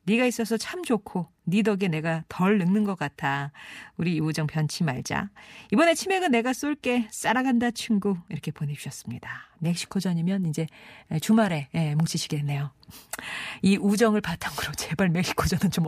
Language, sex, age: Korean, female, 40-59